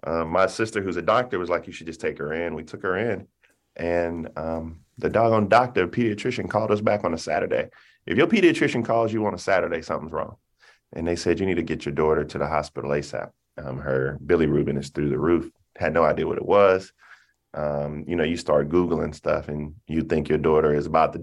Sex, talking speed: male, 230 wpm